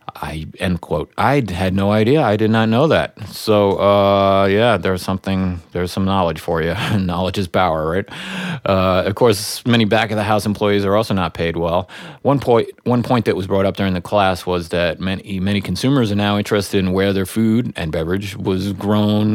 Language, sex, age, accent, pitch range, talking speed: English, male, 30-49, American, 95-110 Hz, 195 wpm